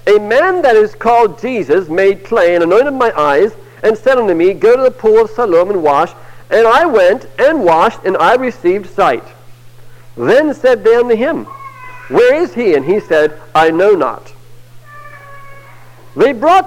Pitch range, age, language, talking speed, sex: 170-285 Hz, 60-79, English, 175 wpm, male